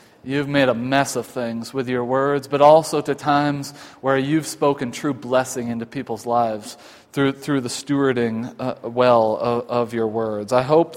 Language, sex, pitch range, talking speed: English, male, 135-160 Hz, 180 wpm